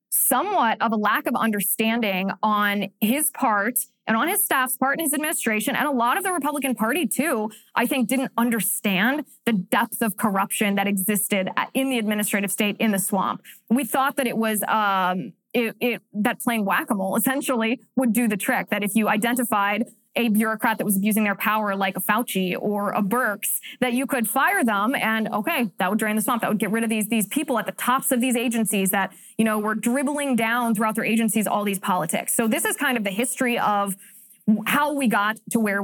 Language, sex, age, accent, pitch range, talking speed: English, female, 20-39, American, 210-255 Hz, 210 wpm